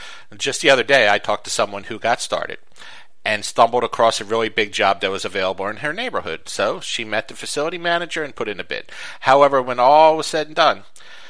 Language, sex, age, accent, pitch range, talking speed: English, male, 50-69, American, 115-150 Hz, 225 wpm